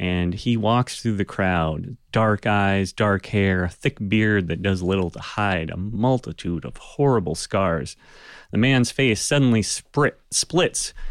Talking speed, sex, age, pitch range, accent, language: 150 wpm, male, 30-49, 95-140 Hz, American, English